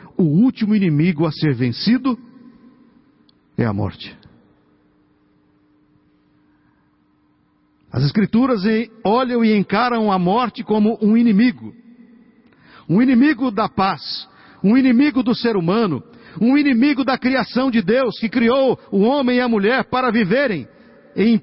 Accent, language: Brazilian, Portuguese